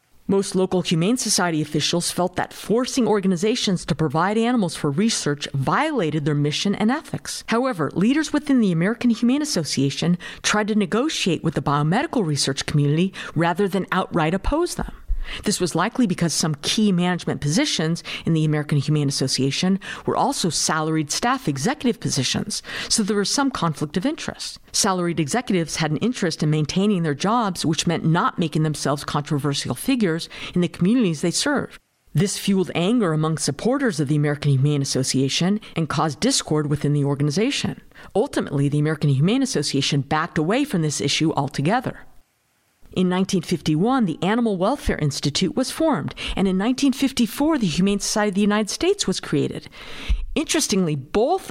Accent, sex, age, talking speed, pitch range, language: American, female, 50-69, 155 wpm, 155-230 Hz, English